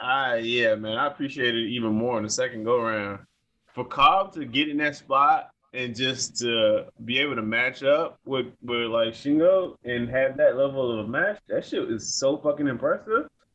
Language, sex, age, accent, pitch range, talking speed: English, male, 20-39, American, 115-150 Hz, 205 wpm